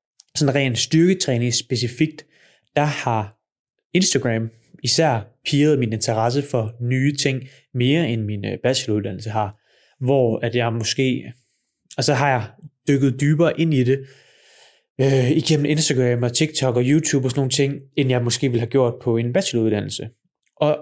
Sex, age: male, 20-39